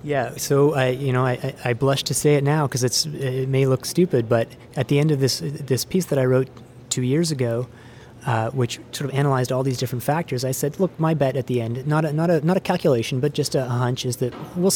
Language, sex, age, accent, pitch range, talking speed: English, male, 30-49, American, 125-150 Hz, 250 wpm